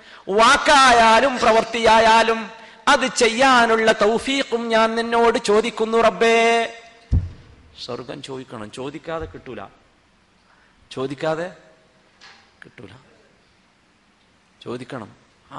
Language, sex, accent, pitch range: Malayalam, male, native, 140-225 Hz